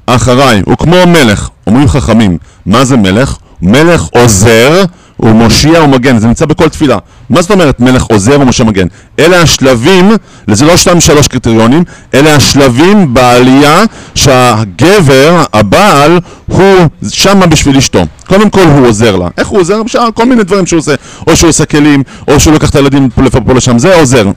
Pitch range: 120-175 Hz